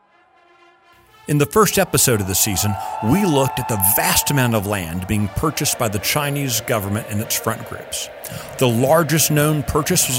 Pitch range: 125-170 Hz